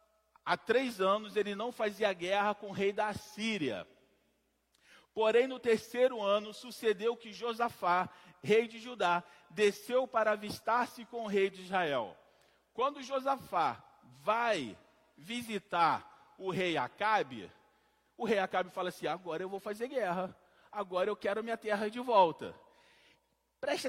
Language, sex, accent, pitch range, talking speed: Portuguese, male, Brazilian, 195-245 Hz, 140 wpm